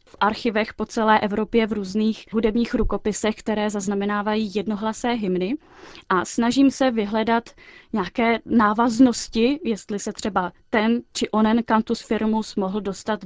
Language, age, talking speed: Czech, 20-39, 130 wpm